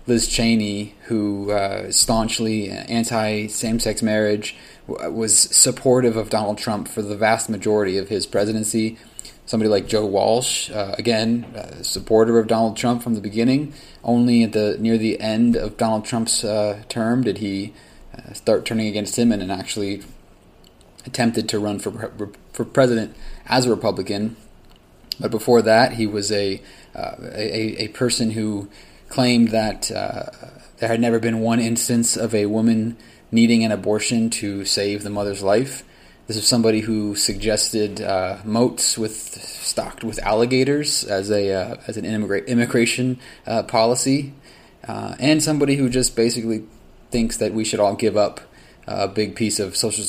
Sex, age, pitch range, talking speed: male, 20-39, 105-115 Hz, 160 wpm